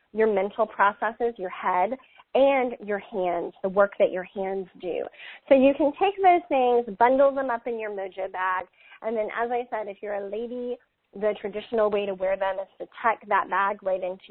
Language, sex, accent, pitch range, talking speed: English, female, American, 205-250 Hz, 205 wpm